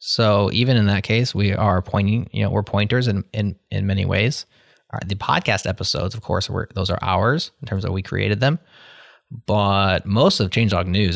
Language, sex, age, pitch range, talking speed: English, male, 20-39, 100-125 Hz, 205 wpm